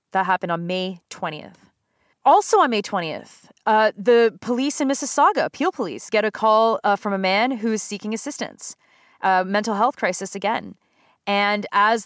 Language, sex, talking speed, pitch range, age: English, female, 165 wpm, 190-230 Hz, 30-49